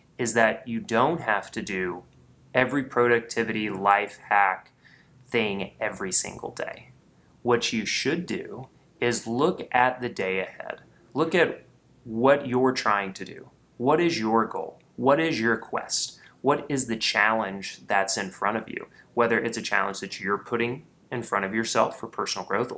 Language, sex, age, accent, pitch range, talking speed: English, male, 30-49, American, 110-135 Hz, 165 wpm